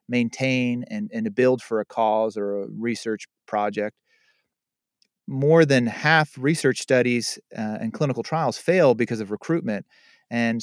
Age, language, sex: 30-49, English, male